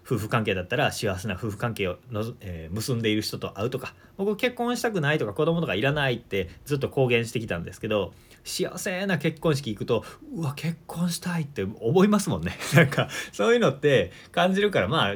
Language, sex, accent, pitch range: Japanese, male, native, 105-175 Hz